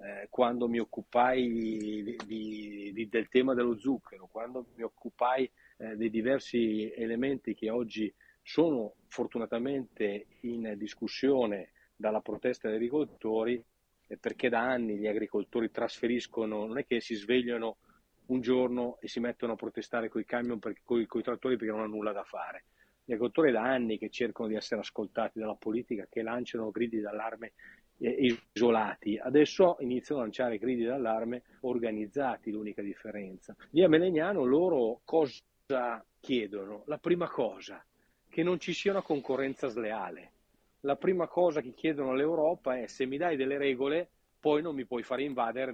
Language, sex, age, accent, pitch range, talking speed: Italian, male, 40-59, native, 110-130 Hz, 145 wpm